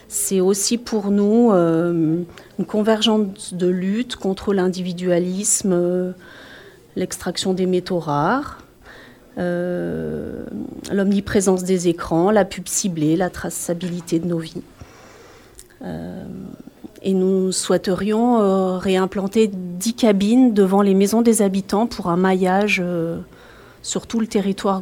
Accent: French